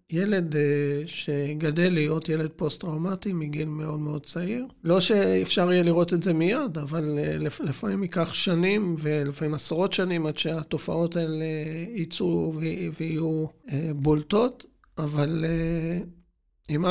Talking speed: 110 wpm